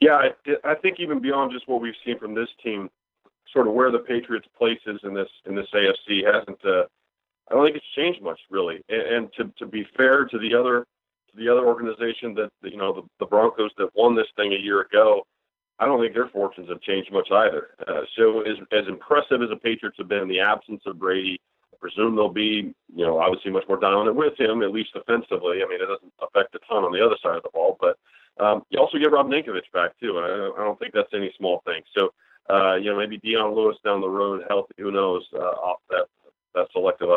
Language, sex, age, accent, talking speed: English, male, 40-59, American, 240 wpm